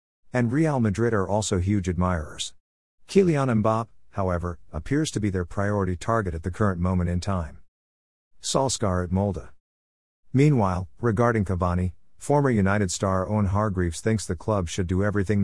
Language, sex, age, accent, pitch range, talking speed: English, male, 50-69, American, 85-115 Hz, 150 wpm